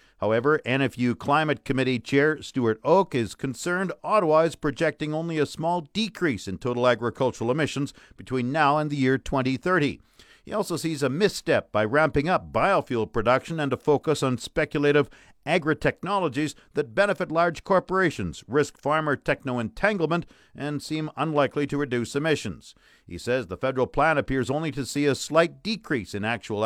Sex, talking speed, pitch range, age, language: male, 155 wpm, 120-155 Hz, 50-69, English